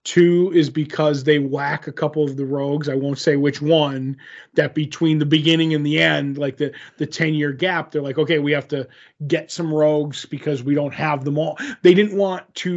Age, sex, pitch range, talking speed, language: 30-49, male, 145-170 Hz, 215 wpm, English